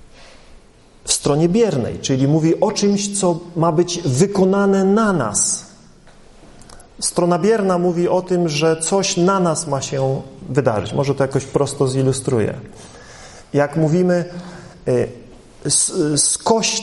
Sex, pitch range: male, 150-195 Hz